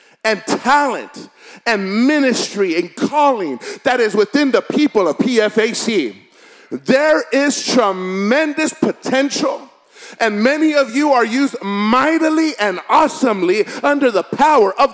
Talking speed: 120 wpm